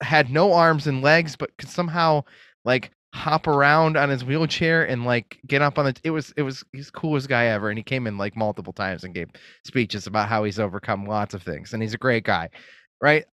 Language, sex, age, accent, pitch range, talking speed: English, male, 20-39, American, 115-160 Hz, 235 wpm